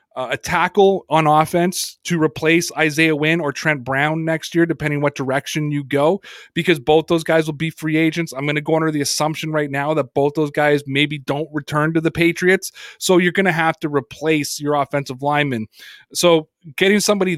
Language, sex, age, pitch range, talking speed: English, male, 30-49, 145-170 Hz, 205 wpm